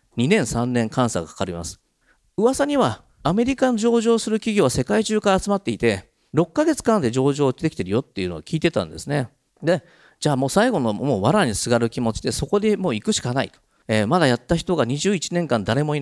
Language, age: Japanese, 40-59